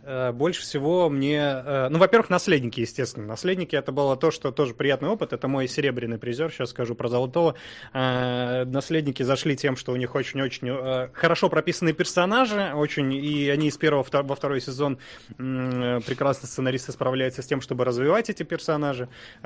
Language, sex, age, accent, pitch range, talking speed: Russian, male, 20-39, native, 125-150 Hz, 155 wpm